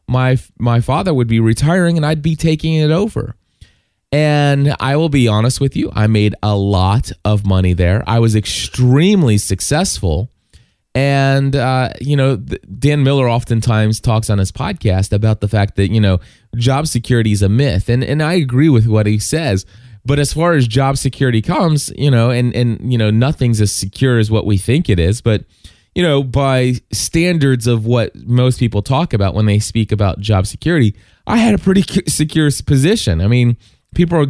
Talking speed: 190 wpm